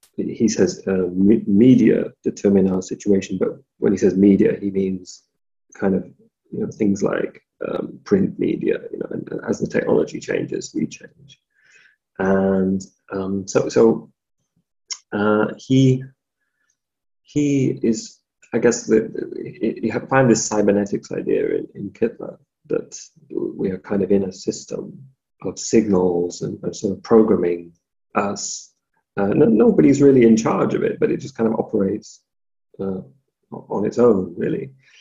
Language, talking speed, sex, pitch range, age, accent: English, 145 wpm, male, 95-130 Hz, 30-49, British